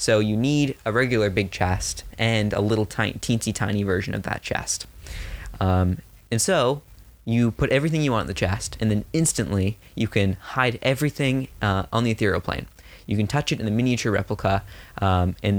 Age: 20-39